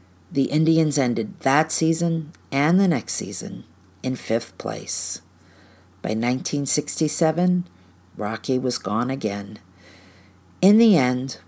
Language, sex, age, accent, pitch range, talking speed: English, female, 50-69, American, 105-160 Hz, 110 wpm